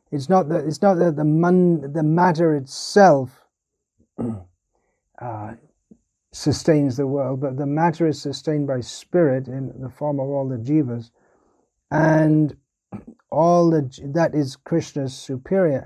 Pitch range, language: 125-165 Hz, English